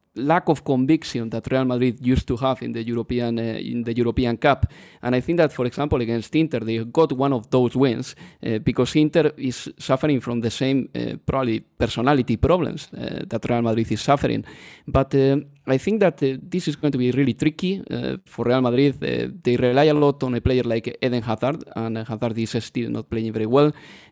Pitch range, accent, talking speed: 120-155 Hz, Spanish, 210 wpm